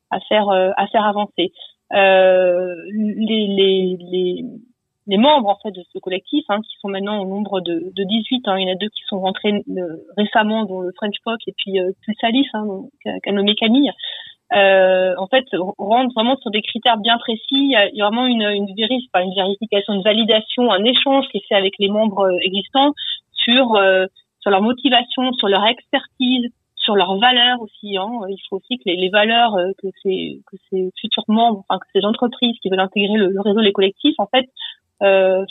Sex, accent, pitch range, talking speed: female, French, 190-235 Hz, 200 wpm